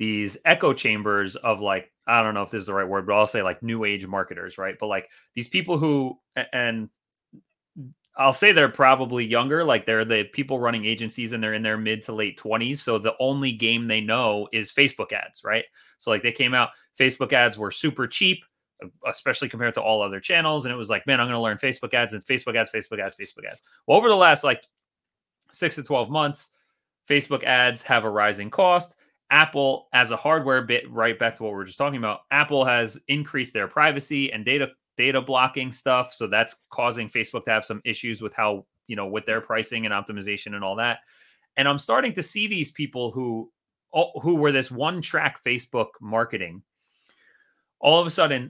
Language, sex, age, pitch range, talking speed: English, male, 30-49, 110-135 Hz, 210 wpm